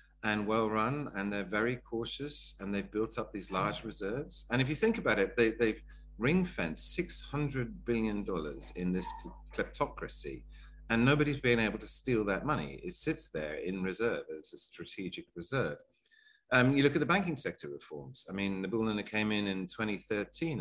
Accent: British